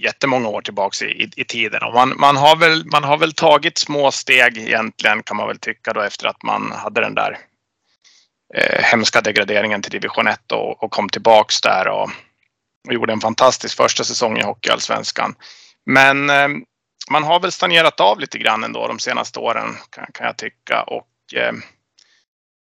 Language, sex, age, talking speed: Swedish, male, 30-49, 160 wpm